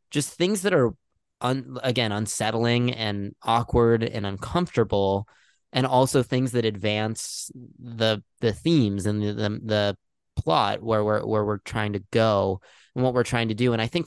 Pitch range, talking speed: 105-125 Hz, 170 wpm